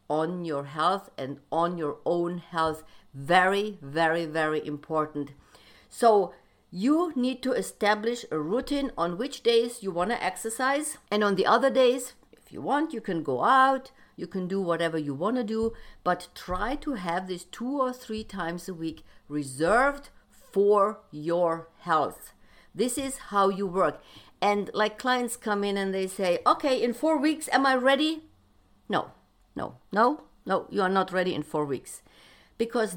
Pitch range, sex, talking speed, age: 165-240 Hz, female, 170 wpm, 50-69